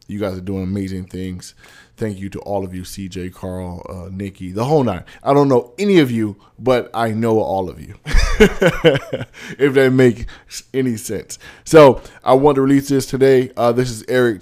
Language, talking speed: English, 195 wpm